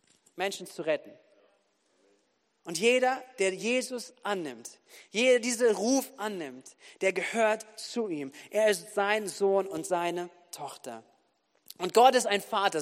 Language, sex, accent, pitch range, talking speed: German, male, German, 205-250 Hz, 130 wpm